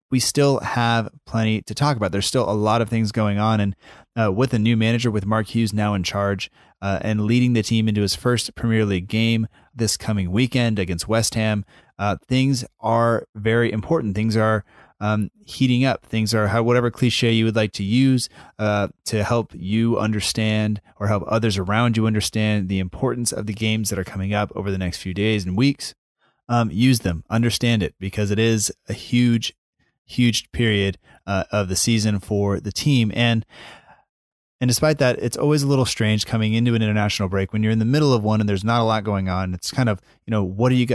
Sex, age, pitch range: male, 30-49, 105-120 Hz